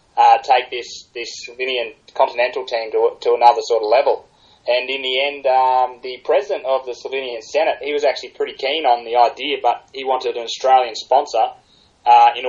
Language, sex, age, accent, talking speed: English, male, 20-39, Australian, 190 wpm